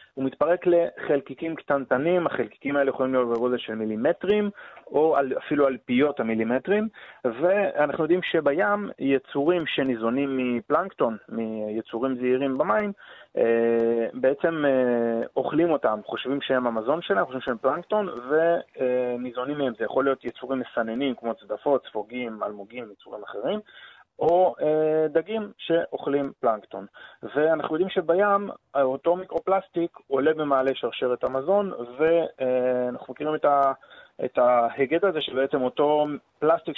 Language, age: Hebrew, 30-49